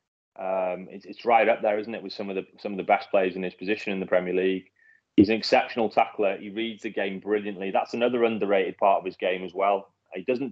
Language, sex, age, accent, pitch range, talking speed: English, male, 30-49, British, 100-115 Hz, 250 wpm